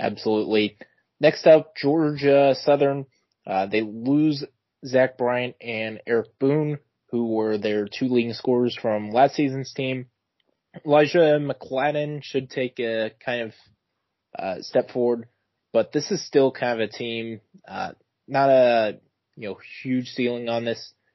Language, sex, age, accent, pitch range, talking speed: English, male, 20-39, American, 110-135 Hz, 140 wpm